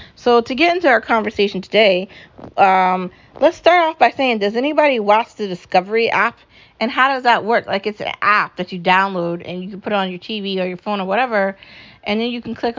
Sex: female